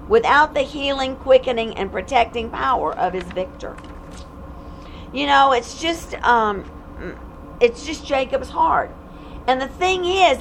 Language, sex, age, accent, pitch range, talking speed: English, female, 50-69, American, 195-285 Hz, 135 wpm